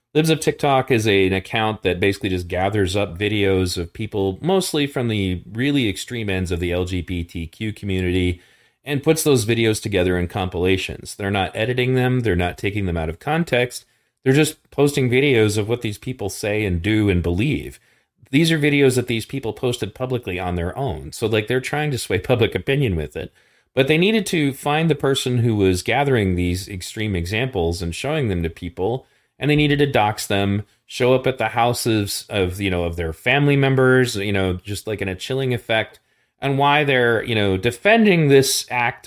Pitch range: 95-130 Hz